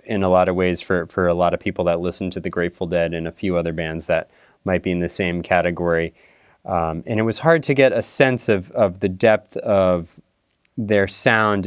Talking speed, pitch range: 230 wpm, 95-115 Hz